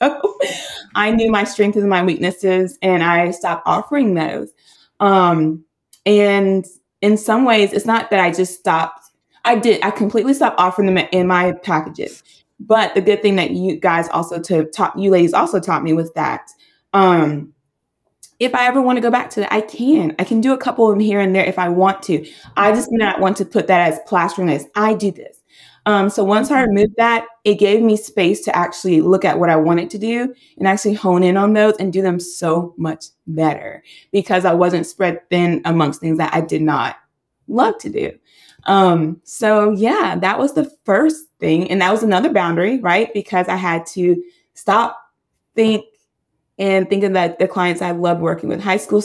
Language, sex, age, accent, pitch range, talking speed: English, female, 20-39, American, 175-215 Hz, 200 wpm